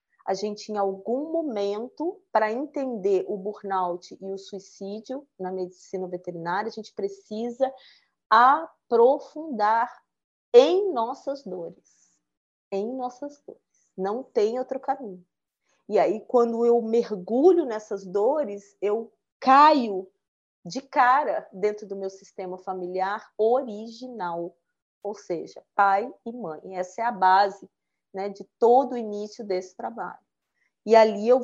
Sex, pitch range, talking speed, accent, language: female, 195-245 Hz, 125 wpm, Brazilian, Portuguese